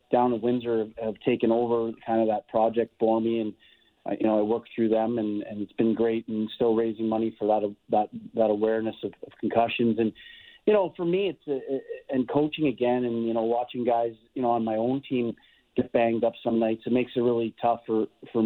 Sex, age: male, 40-59